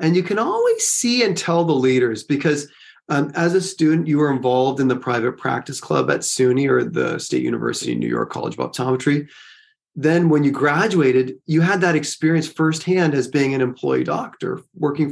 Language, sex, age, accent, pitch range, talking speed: English, male, 30-49, American, 130-170 Hz, 195 wpm